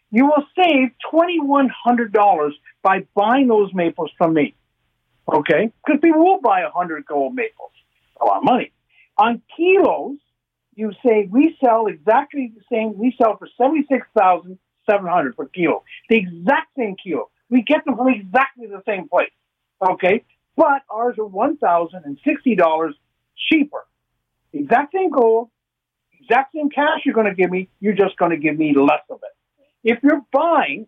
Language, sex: English, male